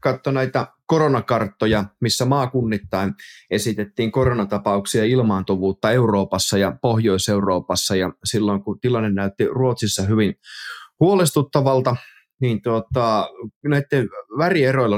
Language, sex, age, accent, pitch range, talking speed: Finnish, male, 20-39, native, 100-130 Hz, 90 wpm